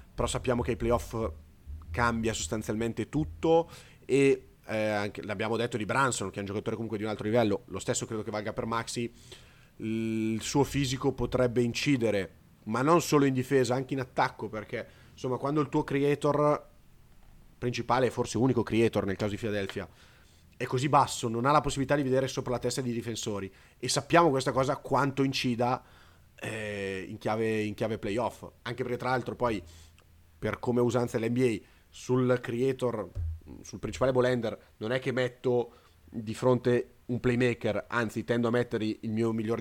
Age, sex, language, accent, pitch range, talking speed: 30-49, male, Italian, native, 100-125 Hz, 170 wpm